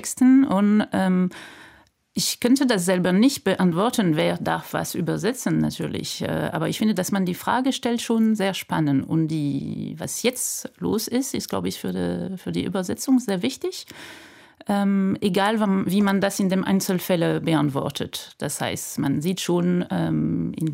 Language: German